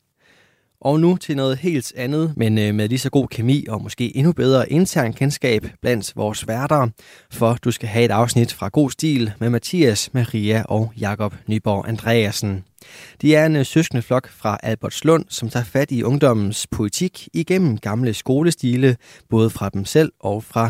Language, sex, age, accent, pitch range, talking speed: Danish, male, 20-39, native, 110-135 Hz, 170 wpm